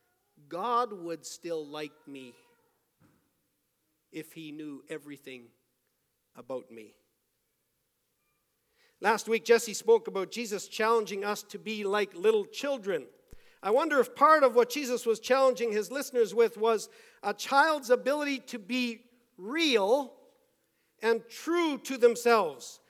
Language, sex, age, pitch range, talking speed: English, male, 50-69, 215-300 Hz, 125 wpm